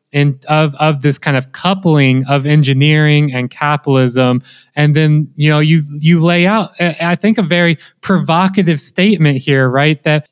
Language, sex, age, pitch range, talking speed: English, male, 20-39, 140-175 Hz, 165 wpm